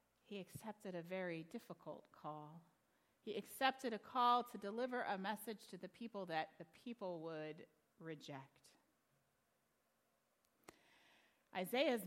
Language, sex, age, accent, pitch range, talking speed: English, female, 40-59, American, 170-220 Hz, 115 wpm